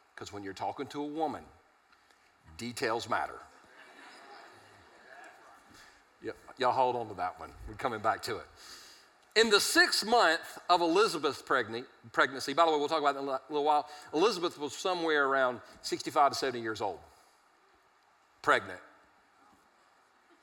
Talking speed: 140 wpm